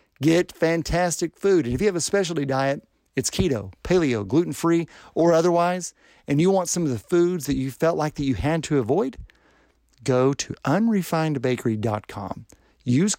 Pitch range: 115-170 Hz